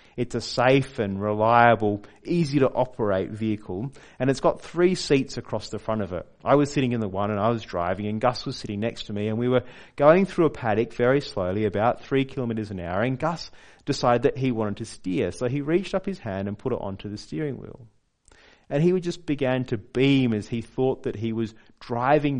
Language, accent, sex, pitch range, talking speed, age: English, Australian, male, 110-145 Hz, 225 wpm, 30-49